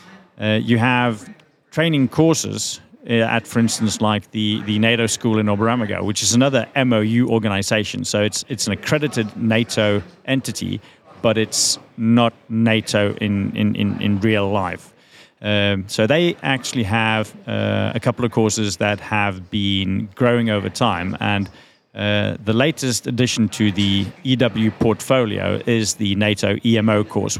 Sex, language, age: male, English, 40-59